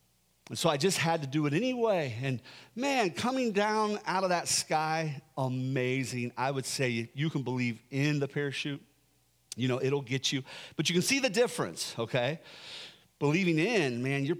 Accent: American